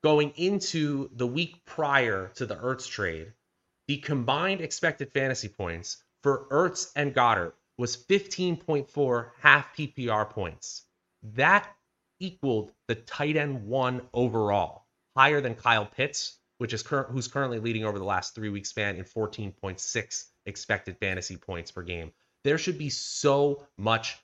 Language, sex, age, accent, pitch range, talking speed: English, male, 30-49, American, 105-140 Hz, 140 wpm